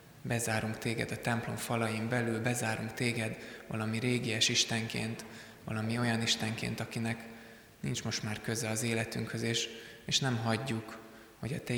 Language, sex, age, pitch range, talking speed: Hungarian, male, 20-39, 110-115 Hz, 145 wpm